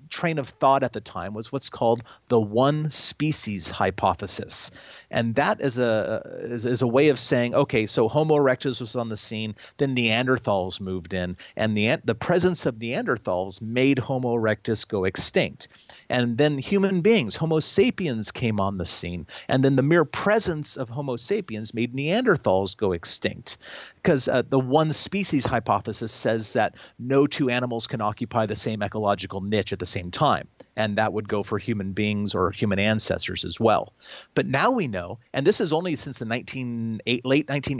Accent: American